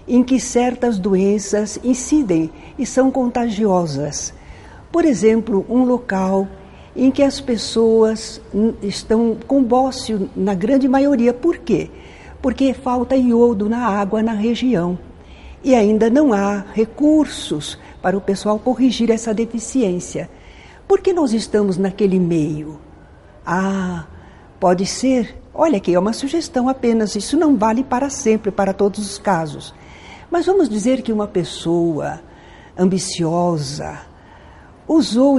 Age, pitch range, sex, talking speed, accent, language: 60-79, 195-255 Hz, female, 125 wpm, Brazilian, Portuguese